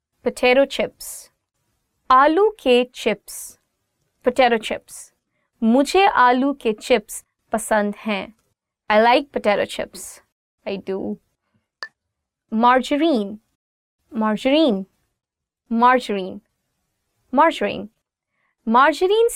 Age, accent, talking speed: 20-39, Indian, 75 wpm